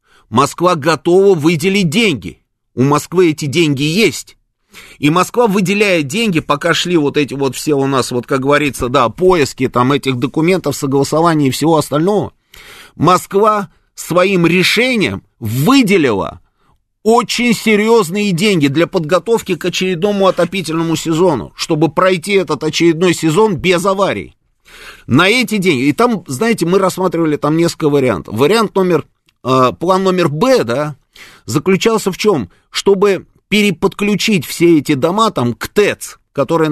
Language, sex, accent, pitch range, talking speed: Russian, male, native, 145-190 Hz, 130 wpm